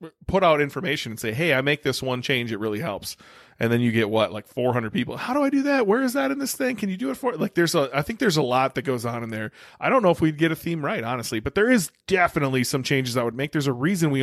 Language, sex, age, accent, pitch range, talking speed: English, male, 30-49, American, 120-155 Hz, 310 wpm